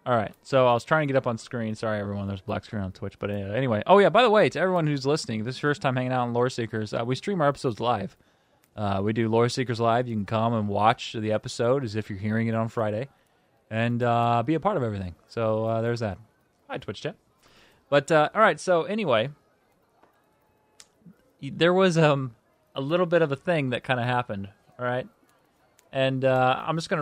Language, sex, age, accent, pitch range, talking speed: English, male, 20-39, American, 110-150 Hz, 240 wpm